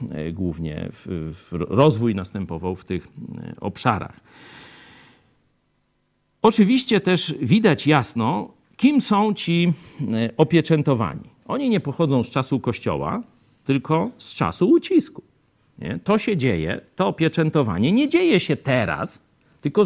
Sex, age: male, 50-69